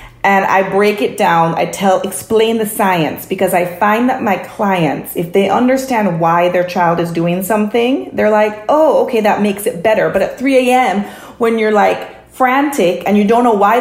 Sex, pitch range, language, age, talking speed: female, 180-225 Hz, English, 30-49, 200 wpm